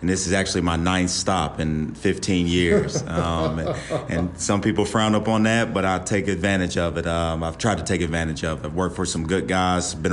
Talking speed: 235 wpm